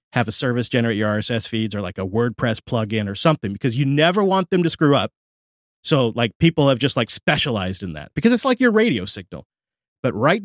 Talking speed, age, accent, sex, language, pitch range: 225 wpm, 30-49, American, male, English, 110-155 Hz